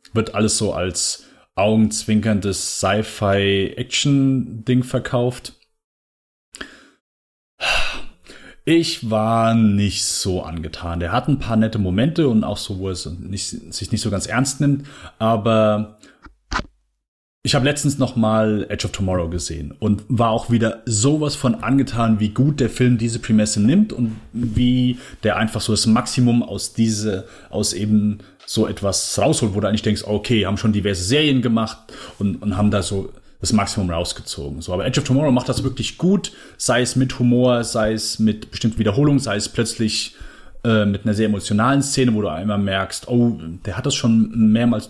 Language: German